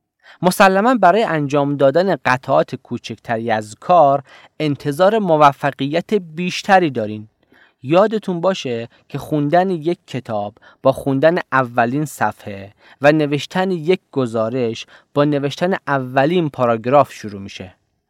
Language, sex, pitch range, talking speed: Persian, male, 130-180 Hz, 105 wpm